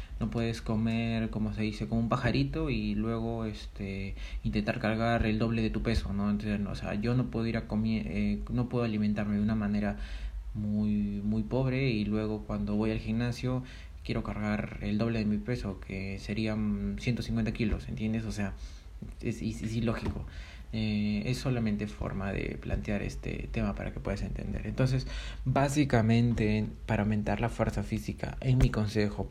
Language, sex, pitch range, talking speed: Spanish, male, 100-115 Hz, 175 wpm